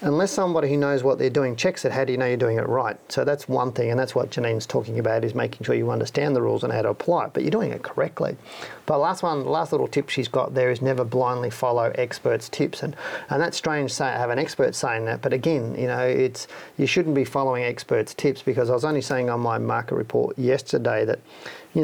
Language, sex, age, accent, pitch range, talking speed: English, male, 40-59, Australian, 125-145 Hz, 255 wpm